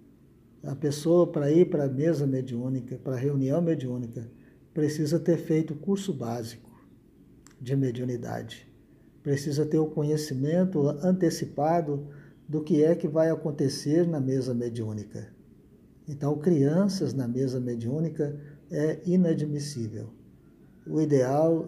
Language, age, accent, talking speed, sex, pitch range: Portuguese, 50-69, Brazilian, 120 wpm, male, 135-165 Hz